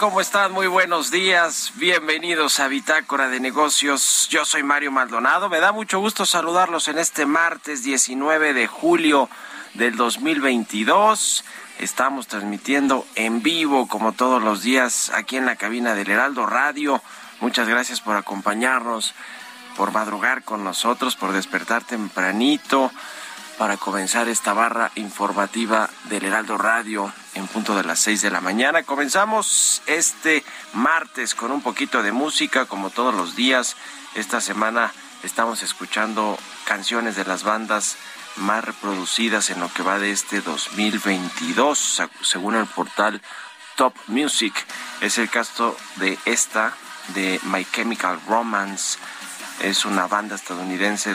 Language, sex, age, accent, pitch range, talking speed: Spanish, male, 40-59, Mexican, 100-140 Hz, 135 wpm